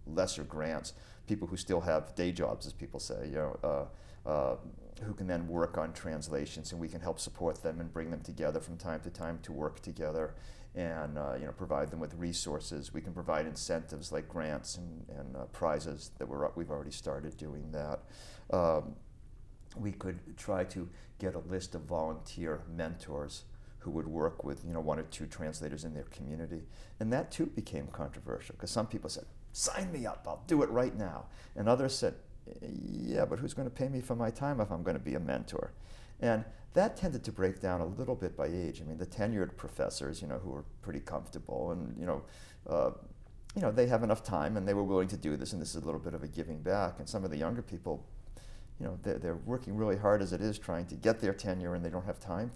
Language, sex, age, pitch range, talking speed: English, male, 50-69, 80-105 Hz, 230 wpm